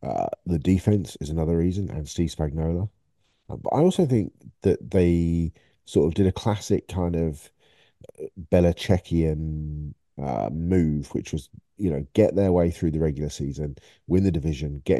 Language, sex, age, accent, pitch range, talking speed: English, male, 40-59, British, 80-95 Hz, 160 wpm